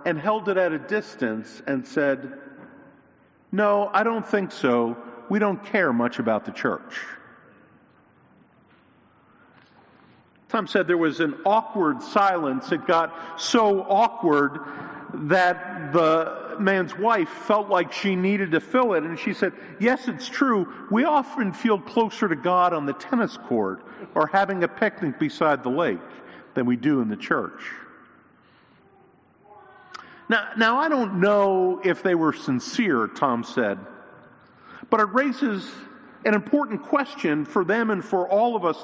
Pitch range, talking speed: 165-230 Hz, 145 wpm